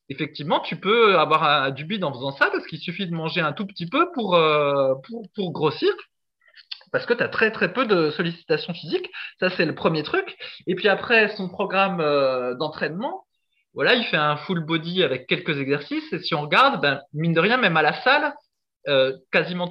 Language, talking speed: French, 205 wpm